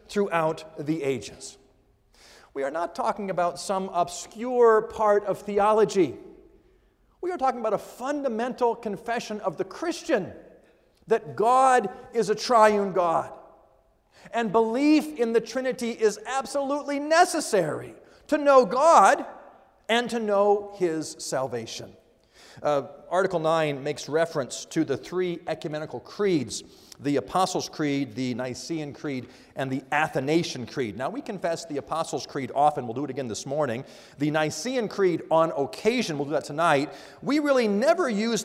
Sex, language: male, English